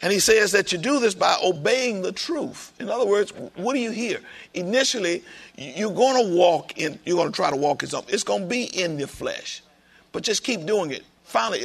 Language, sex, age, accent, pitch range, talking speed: English, male, 50-69, American, 175-245 Hz, 225 wpm